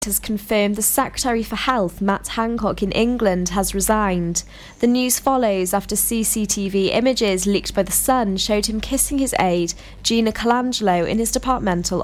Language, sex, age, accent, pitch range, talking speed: English, female, 20-39, British, 195-240 Hz, 160 wpm